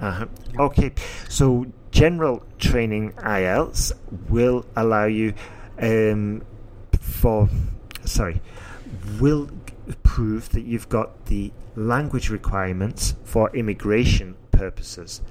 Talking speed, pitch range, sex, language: 90 wpm, 95-115 Hz, male, English